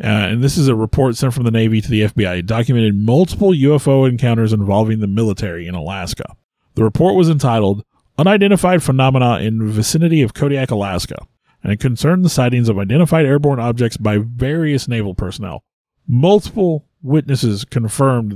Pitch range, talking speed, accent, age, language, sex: 110-150 Hz, 165 wpm, American, 30-49, English, male